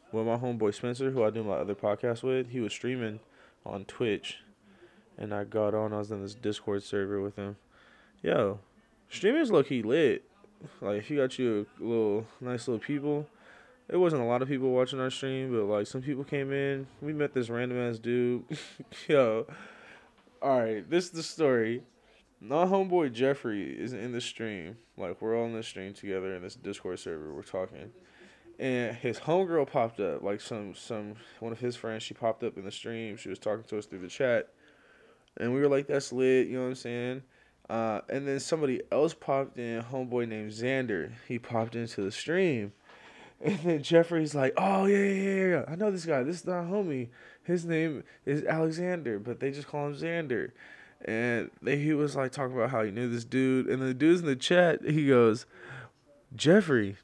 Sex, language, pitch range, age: male, English, 110-145 Hz, 20-39